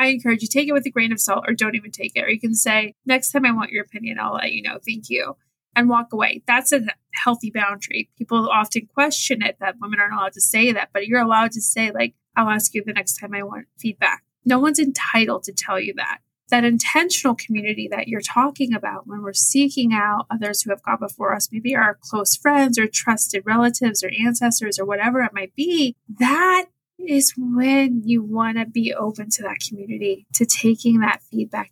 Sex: female